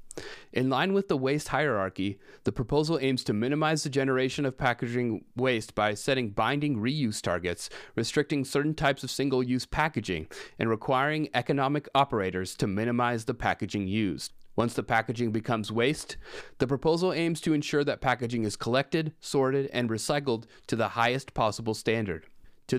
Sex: male